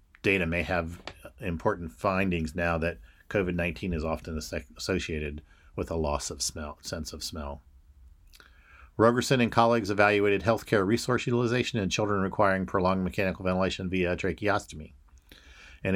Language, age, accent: English, 50-69, American